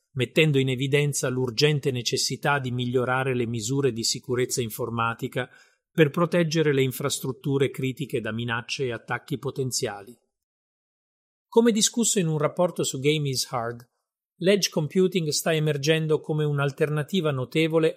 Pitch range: 125-155 Hz